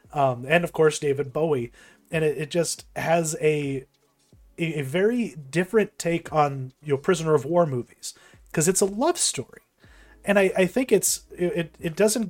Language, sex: English, male